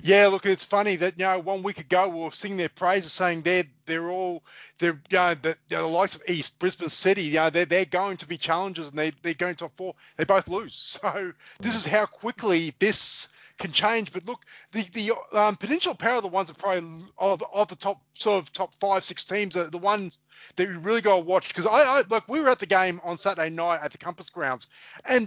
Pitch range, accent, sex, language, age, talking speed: 175-210 Hz, Australian, male, English, 30-49, 245 wpm